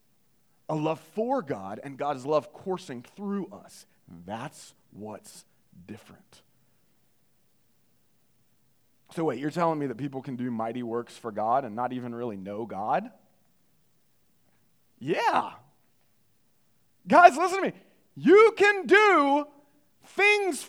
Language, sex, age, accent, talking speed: English, male, 30-49, American, 120 wpm